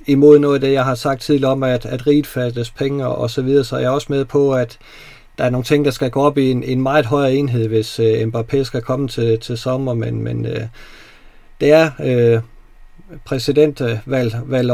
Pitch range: 120-140 Hz